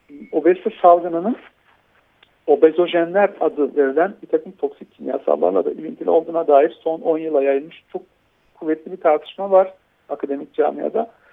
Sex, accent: male, native